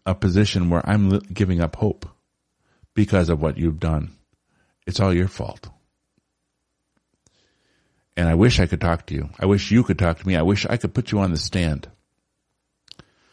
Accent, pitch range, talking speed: American, 85-100 Hz, 180 wpm